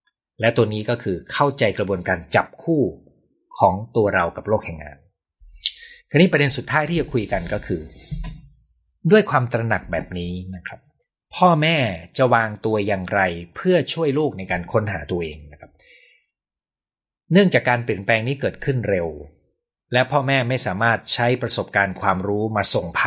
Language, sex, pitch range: Thai, male, 95-135 Hz